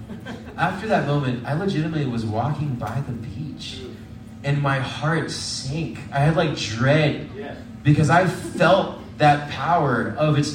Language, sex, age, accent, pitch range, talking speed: English, male, 30-49, American, 115-170 Hz, 140 wpm